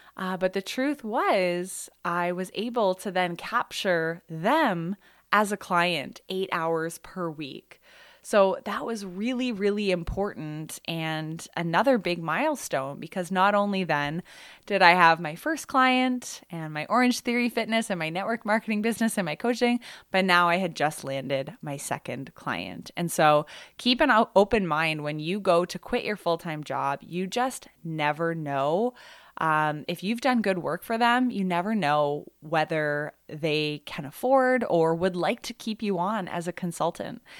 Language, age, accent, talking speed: English, 20-39, American, 165 wpm